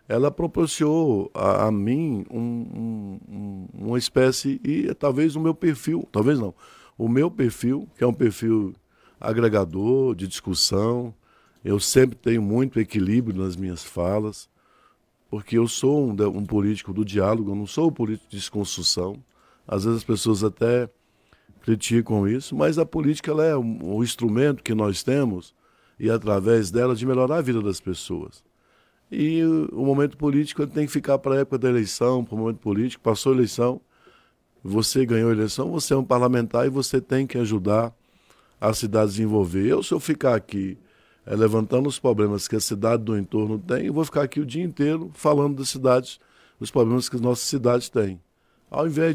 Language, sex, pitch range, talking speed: Portuguese, male, 105-135 Hz, 180 wpm